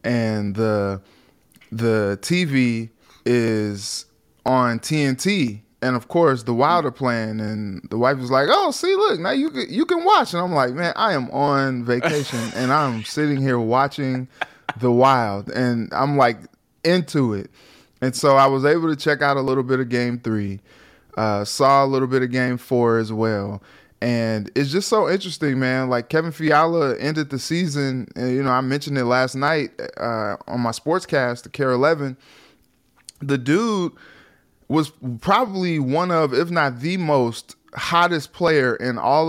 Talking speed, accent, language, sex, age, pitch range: 170 wpm, American, English, male, 20-39, 115-145 Hz